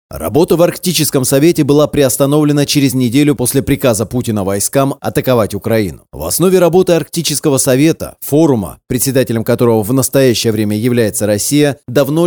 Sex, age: male, 30-49